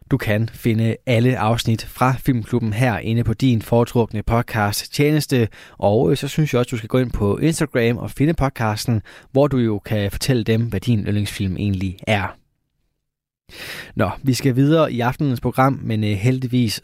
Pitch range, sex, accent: 105-130 Hz, male, native